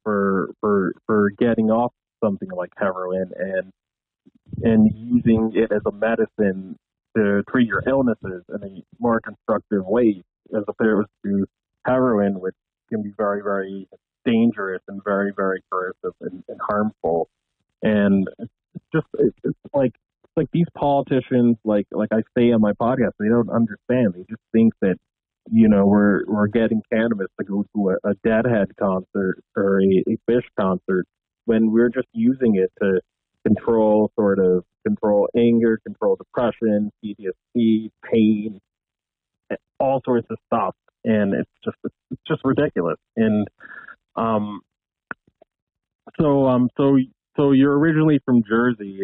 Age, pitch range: 30-49, 100-120 Hz